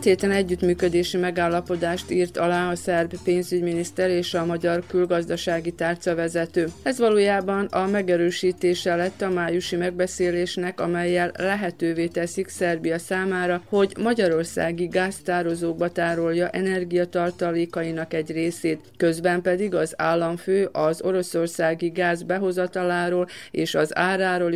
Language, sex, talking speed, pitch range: Hungarian, female, 105 wpm, 170-185 Hz